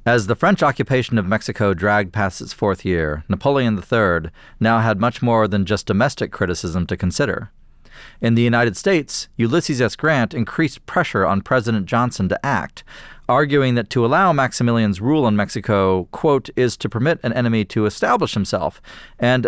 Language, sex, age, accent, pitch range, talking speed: English, male, 40-59, American, 100-130 Hz, 170 wpm